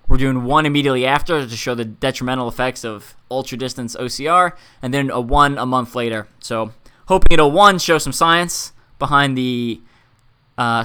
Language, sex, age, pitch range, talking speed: English, male, 20-39, 120-145 Hz, 165 wpm